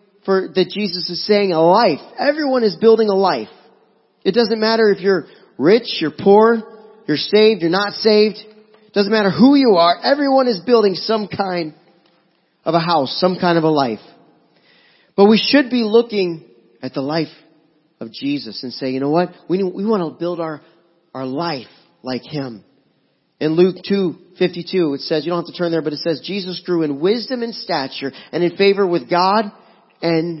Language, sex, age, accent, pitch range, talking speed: English, male, 40-59, American, 150-200 Hz, 190 wpm